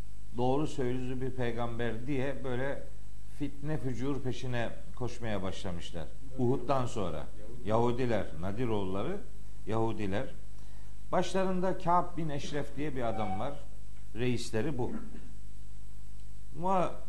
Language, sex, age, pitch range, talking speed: Turkish, male, 50-69, 115-145 Hz, 95 wpm